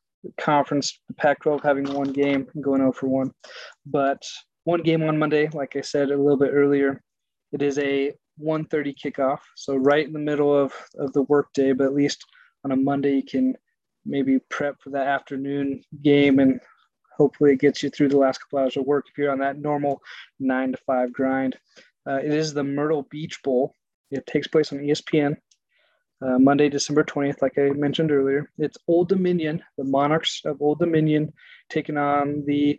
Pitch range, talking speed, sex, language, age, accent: 140-150 Hz, 190 wpm, male, English, 20-39, American